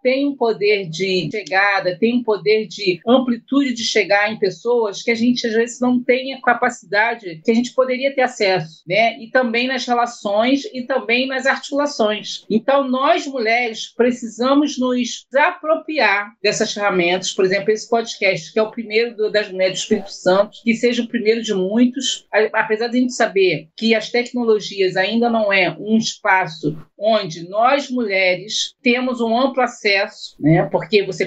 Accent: Brazilian